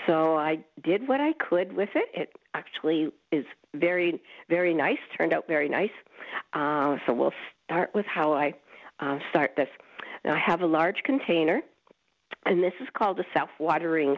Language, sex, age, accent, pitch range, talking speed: English, female, 60-79, American, 150-195 Hz, 170 wpm